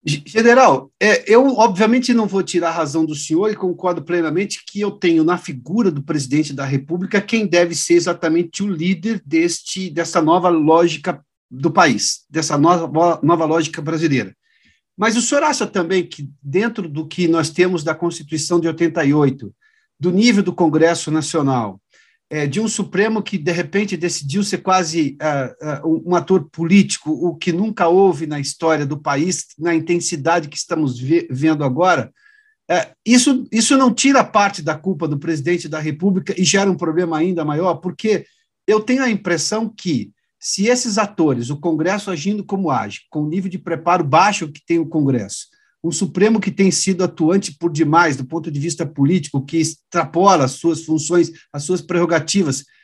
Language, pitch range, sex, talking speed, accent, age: Portuguese, 160-200 Hz, male, 165 wpm, Brazilian, 50-69